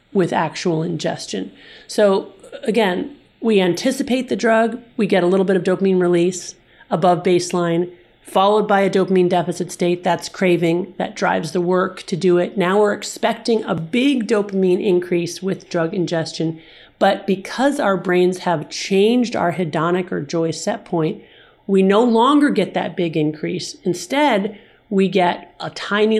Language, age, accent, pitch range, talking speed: English, 40-59, American, 170-200 Hz, 155 wpm